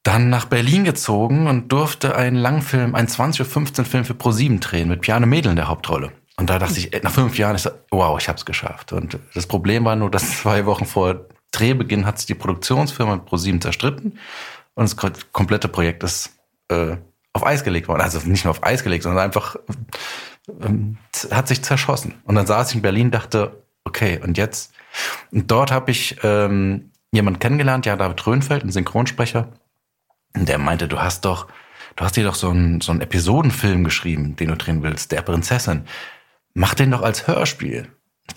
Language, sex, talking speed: German, male, 195 wpm